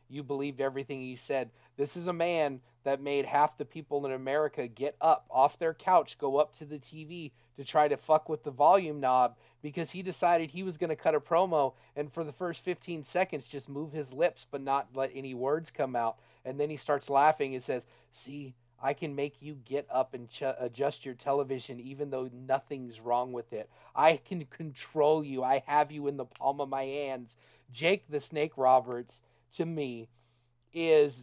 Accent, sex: American, male